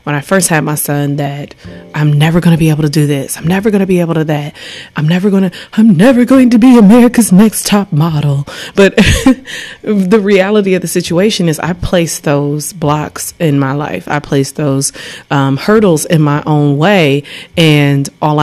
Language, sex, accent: English, female, American